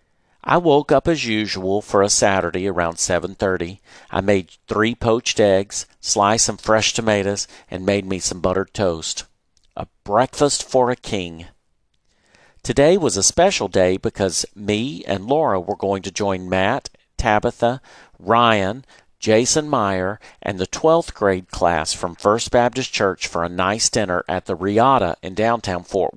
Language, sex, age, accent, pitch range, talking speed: English, male, 50-69, American, 95-125 Hz, 155 wpm